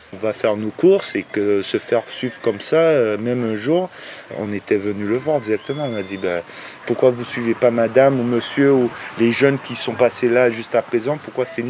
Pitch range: 110-135 Hz